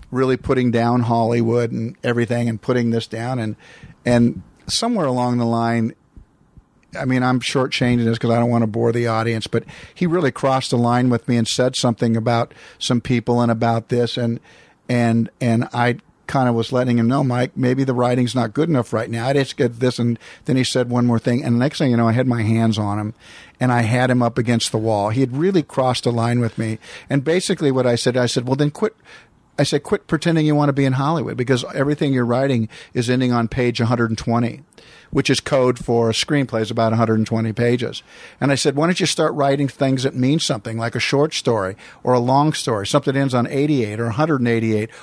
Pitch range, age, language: 115-135 Hz, 50-69, English